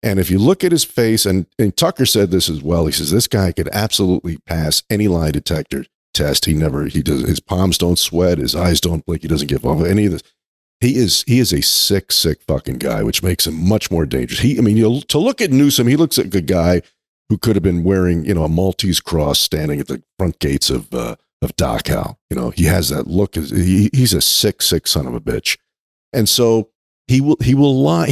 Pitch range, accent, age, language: 85-125 Hz, American, 50-69, English